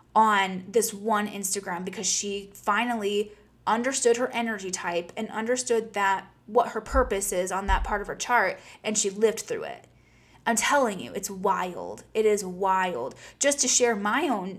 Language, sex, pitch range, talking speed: English, female, 200-245 Hz, 175 wpm